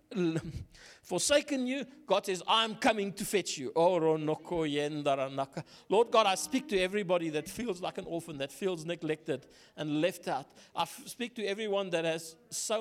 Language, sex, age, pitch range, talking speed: English, male, 60-79, 165-215 Hz, 155 wpm